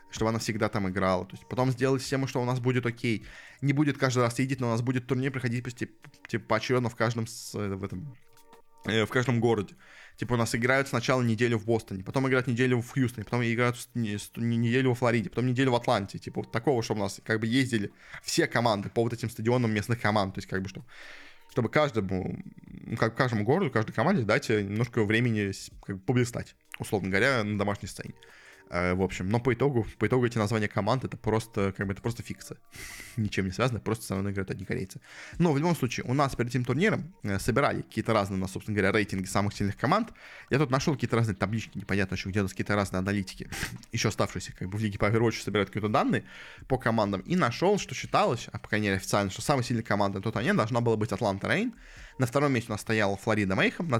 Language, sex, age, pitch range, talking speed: Russian, male, 20-39, 100-125 Hz, 220 wpm